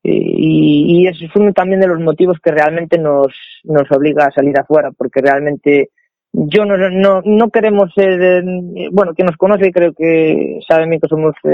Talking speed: 185 wpm